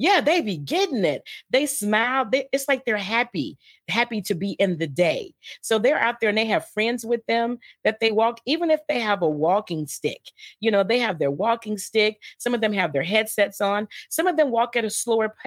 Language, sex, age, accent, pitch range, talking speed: English, female, 30-49, American, 190-235 Hz, 225 wpm